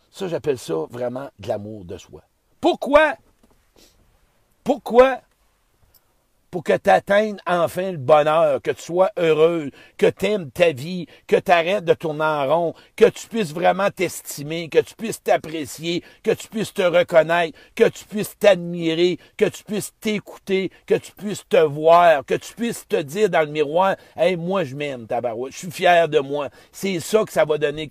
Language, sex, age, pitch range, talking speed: French, male, 60-79, 130-180 Hz, 185 wpm